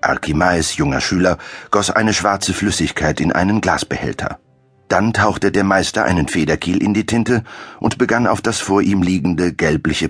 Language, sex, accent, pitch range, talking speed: German, male, German, 85-110 Hz, 160 wpm